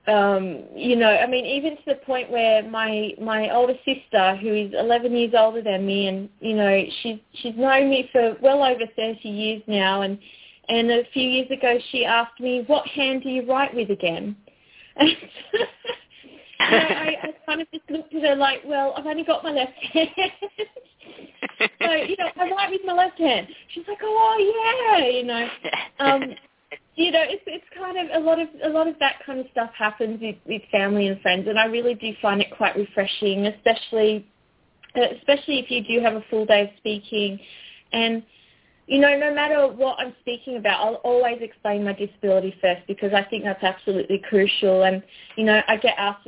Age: 20-39